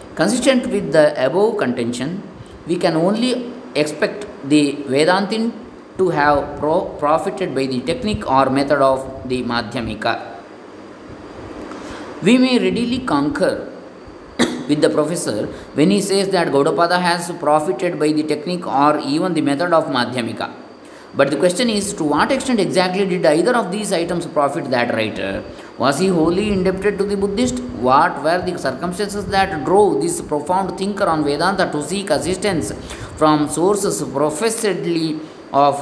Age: 20-39